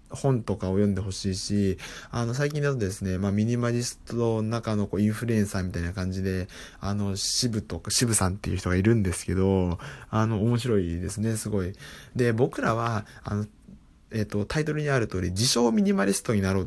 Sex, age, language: male, 20-39, Japanese